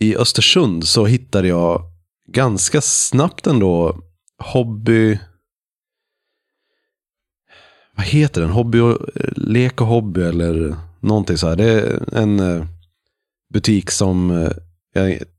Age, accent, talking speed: 30-49, native, 105 wpm